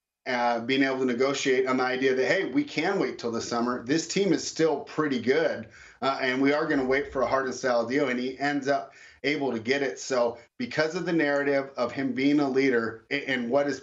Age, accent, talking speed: 30-49, American, 245 wpm